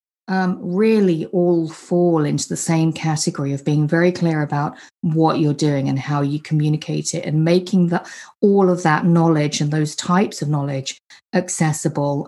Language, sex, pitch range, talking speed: English, female, 150-190 Hz, 165 wpm